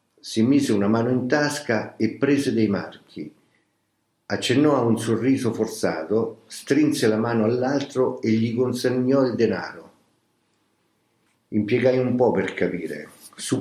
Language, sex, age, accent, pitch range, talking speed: Italian, male, 50-69, native, 105-130 Hz, 130 wpm